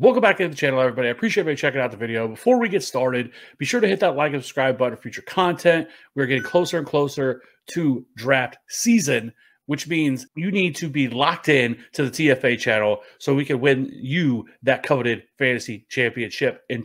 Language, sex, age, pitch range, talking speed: English, male, 30-49, 125-155 Hz, 210 wpm